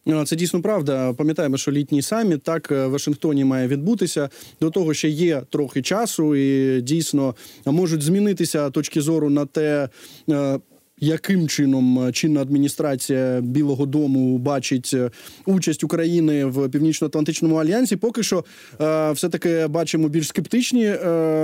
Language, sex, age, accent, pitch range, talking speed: Ukrainian, male, 20-39, native, 150-190 Hz, 125 wpm